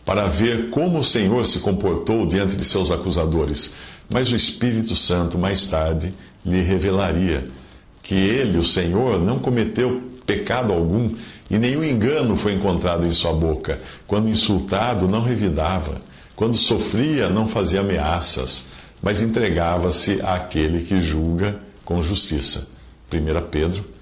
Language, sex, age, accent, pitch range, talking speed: English, male, 50-69, Brazilian, 85-120 Hz, 130 wpm